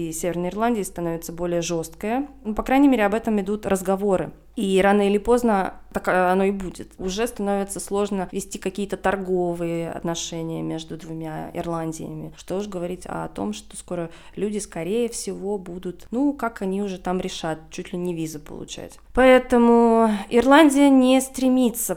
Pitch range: 180-225 Hz